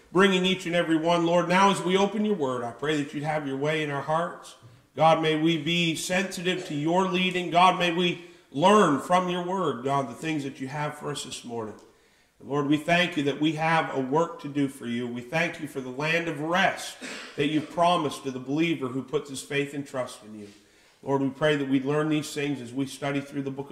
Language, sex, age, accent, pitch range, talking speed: English, male, 50-69, American, 140-220 Hz, 245 wpm